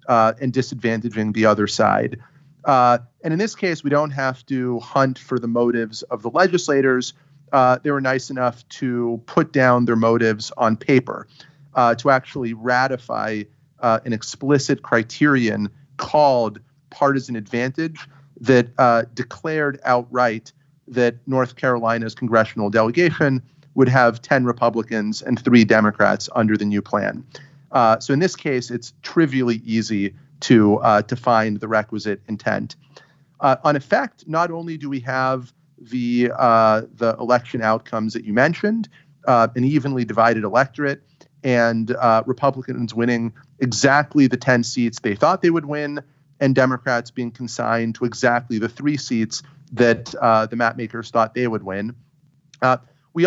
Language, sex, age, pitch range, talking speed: English, male, 30-49, 115-140 Hz, 150 wpm